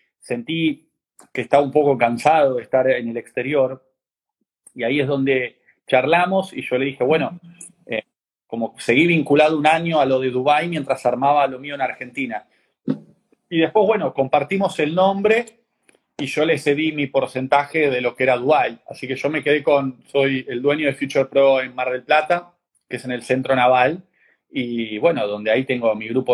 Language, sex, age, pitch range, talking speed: Spanish, male, 30-49, 120-155 Hz, 190 wpm